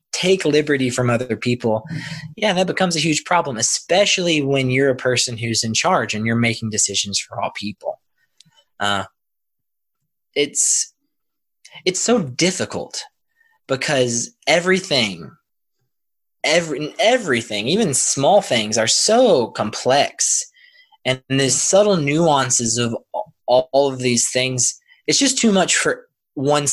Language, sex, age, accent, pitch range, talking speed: English, male, 20-39, American, 120-180 Hz, 130 wpm